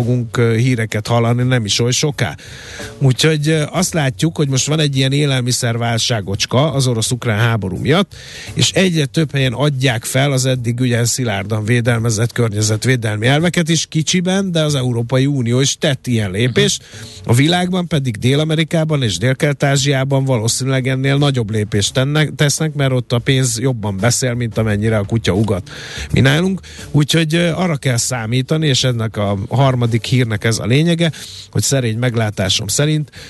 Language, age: Hungarian, 50-69